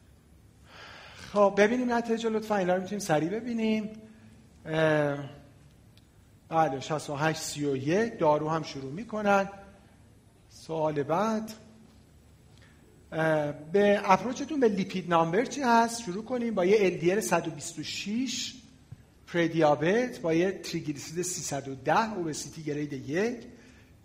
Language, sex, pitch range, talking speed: Persian, male, 145-205 Hz, 100 wpm